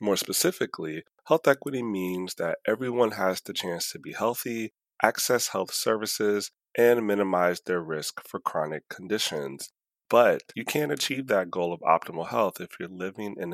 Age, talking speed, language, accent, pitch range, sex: 30-49, 160 wpm, English, American, 85-110 Hz, male